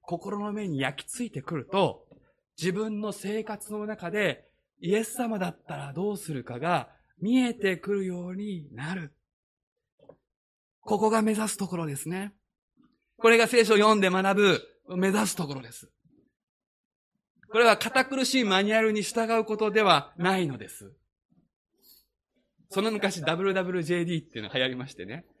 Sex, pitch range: male, 155-225 Hz